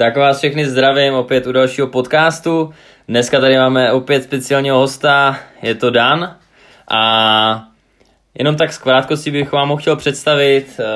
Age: 20-39